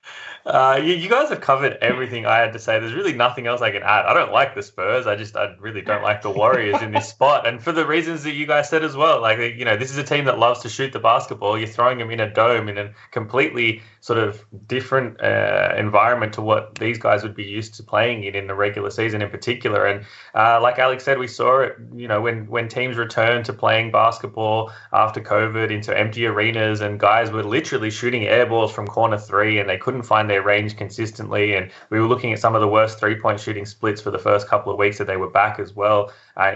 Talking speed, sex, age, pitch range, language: 250 wpm, male, 20-39, 105-120 Hz, English